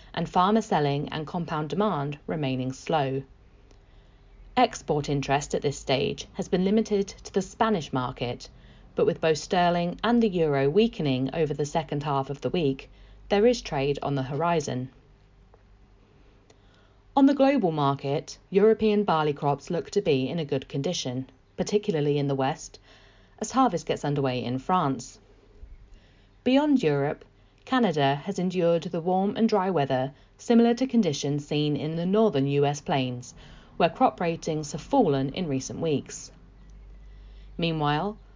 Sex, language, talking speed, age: female, English, 145 wpm, 40-59